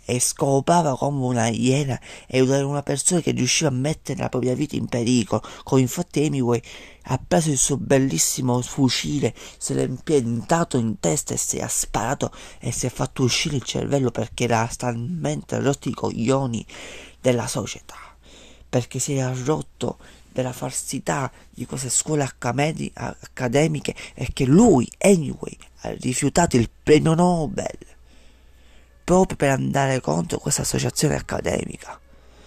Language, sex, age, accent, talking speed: Italian, male, 40-59, native, 145 wpm